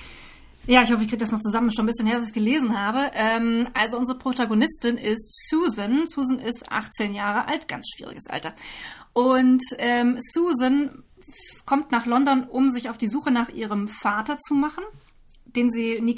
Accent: German